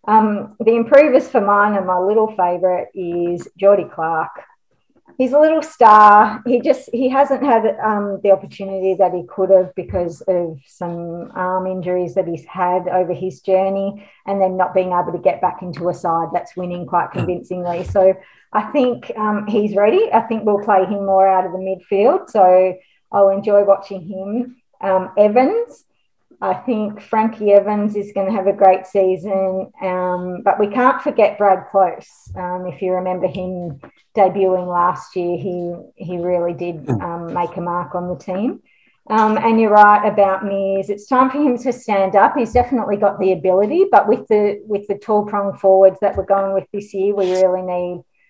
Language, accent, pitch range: English, Australian, 180-210 Hz